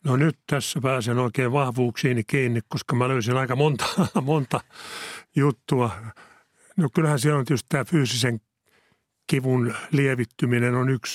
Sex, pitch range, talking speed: male, 120-145 Hz, 135 wpm